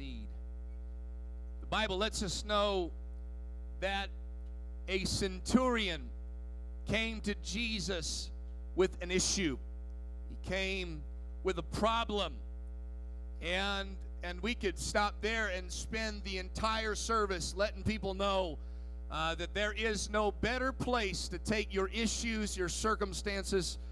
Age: 40-59